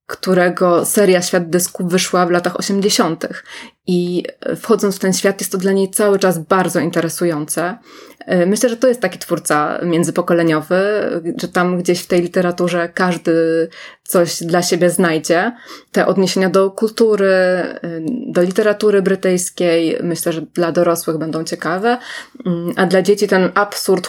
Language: Polish